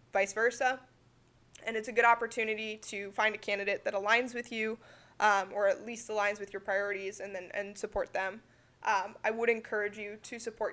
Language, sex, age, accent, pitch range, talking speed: English, female, 20-39, American, 200-225 Hz, 195 wpm